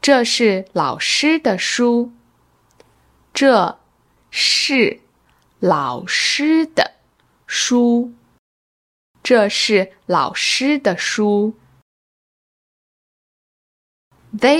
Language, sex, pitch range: English, female, 180-260 Hz